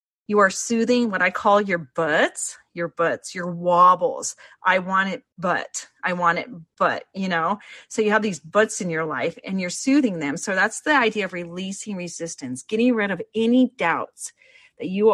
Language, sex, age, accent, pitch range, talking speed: English, female, 40-59, American, 170-230 Hz, 190 wpm